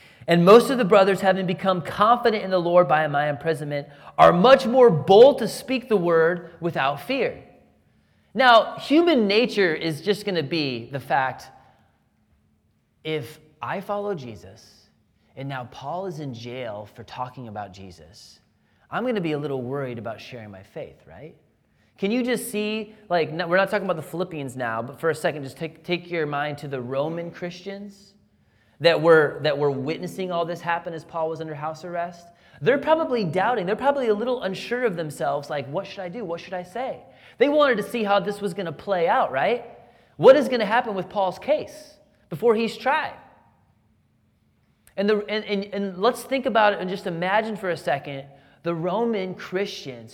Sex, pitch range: male, 145-210 Hz